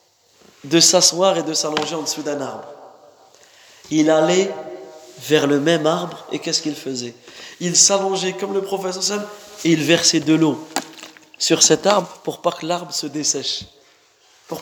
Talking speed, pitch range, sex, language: 160 wpm, 150-185 Hz, male, English